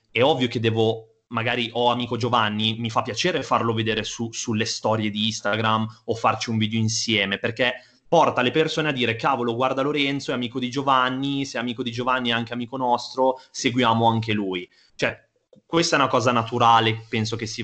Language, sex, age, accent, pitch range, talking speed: Italian, male, 20-39, native, 105-125 Hz, 190 wpm